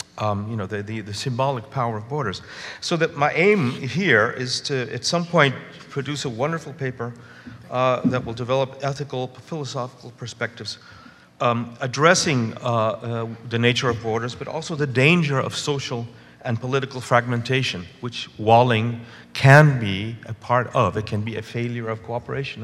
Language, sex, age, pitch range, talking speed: French, male, 50-69, 110-140 Hz, 165 wpm